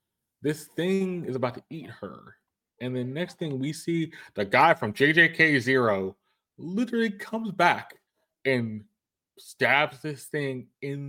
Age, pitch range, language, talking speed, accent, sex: 20-39, 120-155 Hz, English, 135 wpm, American, male